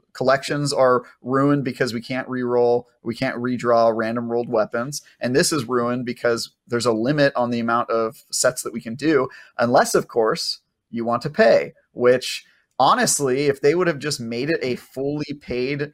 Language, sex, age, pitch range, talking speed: English, male, 30-49, 120-145 Hz, 185 wpm